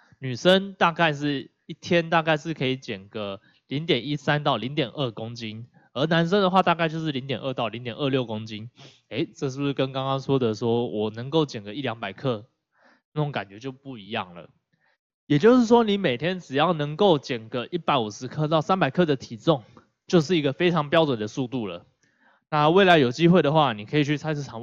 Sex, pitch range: male, 125-170 Hz